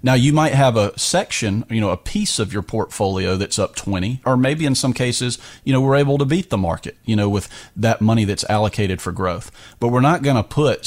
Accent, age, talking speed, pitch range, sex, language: American, 40-59, 245 wpm, 100-120 Hz, male, English